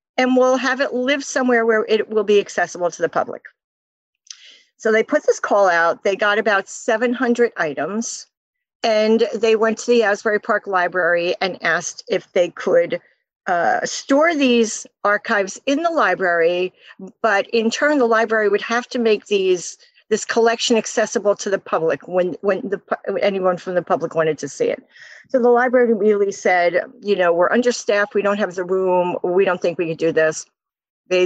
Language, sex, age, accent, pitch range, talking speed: English, female, 50-69, American, 185-245 Hz, 180 wpm